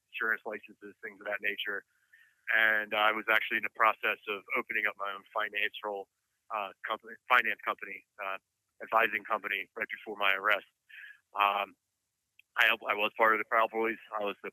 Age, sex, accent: 30-49, male, American